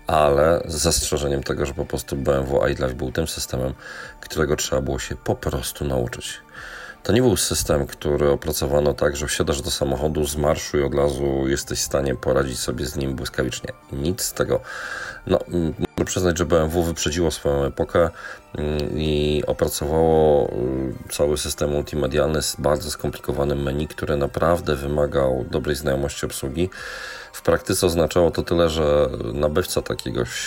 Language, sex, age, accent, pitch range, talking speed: Polish, male, 40-59, native, 70-90 Hz, 150 wpm